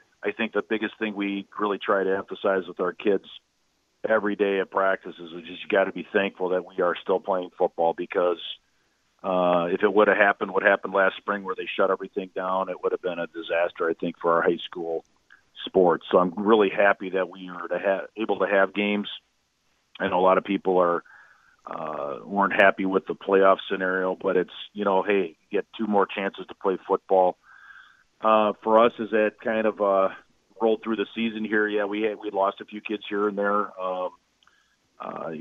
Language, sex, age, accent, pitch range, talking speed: English, male, 40-59, American, 95-105 Hz, 215 wpm